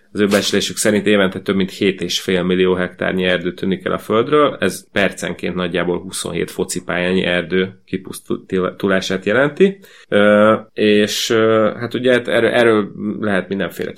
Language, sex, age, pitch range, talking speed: Hungarian, male, 30-49, 95-105 Hz, 125 wpm